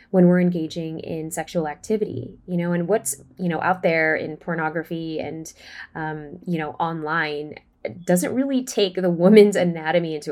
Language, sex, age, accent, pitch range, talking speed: English, female, 10-29, American, 170-205 Hz, 170 wpm